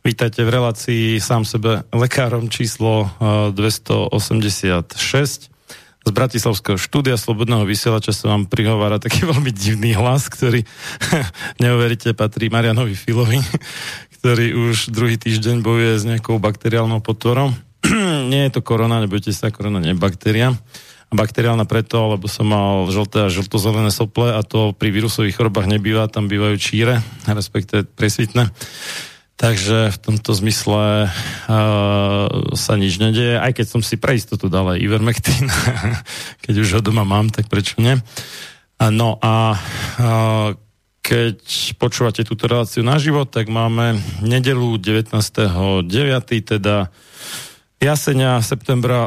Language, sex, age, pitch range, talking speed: Slovak, male, 40-59, 105-120 Hz, 130 wpm